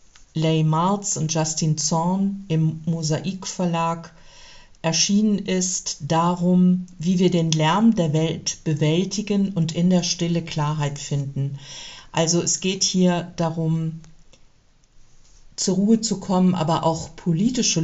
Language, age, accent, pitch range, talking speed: German, 50-69, German, 155-185 Hz, 120 wpm